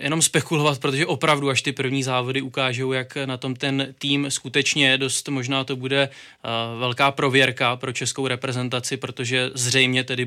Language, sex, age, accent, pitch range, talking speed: Czech, male, 20-39, native, 130-140 Hz, 165 wpm